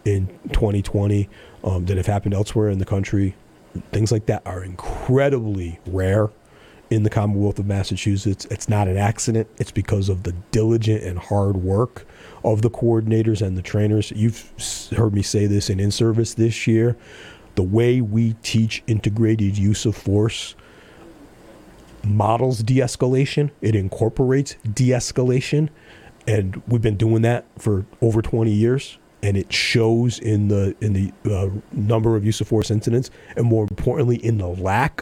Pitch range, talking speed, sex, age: 100-115 Hz, 155 wpm, male, 40-59